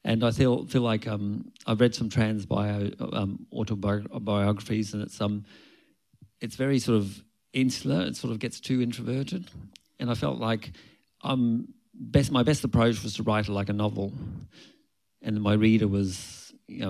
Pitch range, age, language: 100-125 Hz, 40-59, English